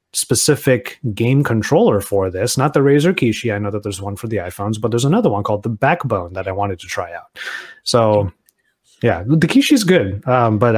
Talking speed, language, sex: 210 wpm, English, male